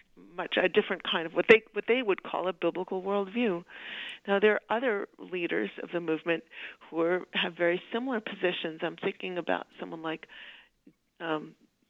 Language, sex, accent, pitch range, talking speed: English, female, American, 165-195 Hz, 170 wpm